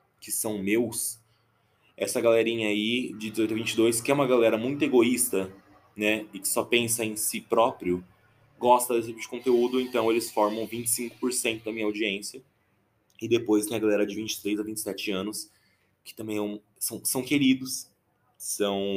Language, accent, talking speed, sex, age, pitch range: Portuguese, Brazilian, 165 wpm, male, 20-39, 100-120 Hz